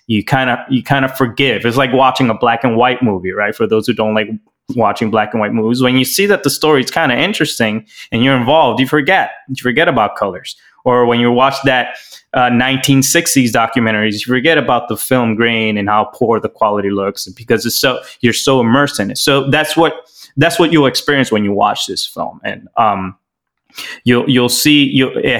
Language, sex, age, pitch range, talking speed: English, male, 20-39, 110-140 Hz, 215 wpm